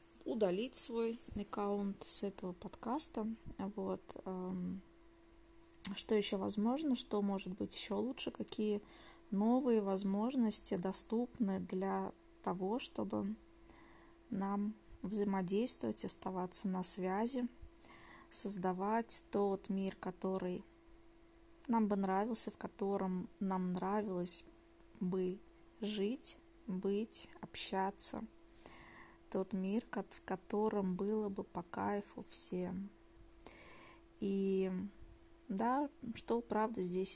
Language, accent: Russian, native